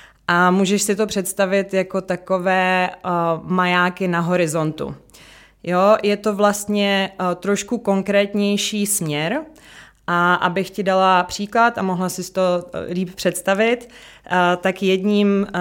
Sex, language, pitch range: female, Czech, 170-195 Hz